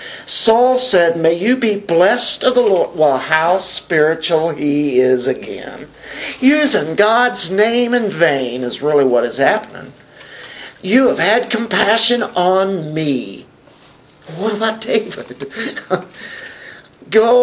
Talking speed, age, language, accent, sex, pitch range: 120 wpm, 50-69, English, American, male, 160-240 Hz